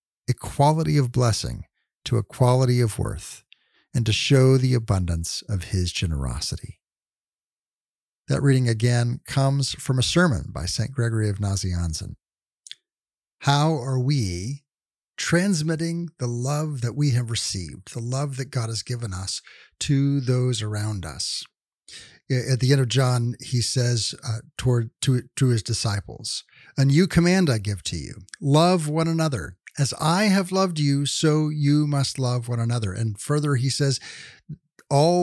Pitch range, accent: 115-145 Hz, American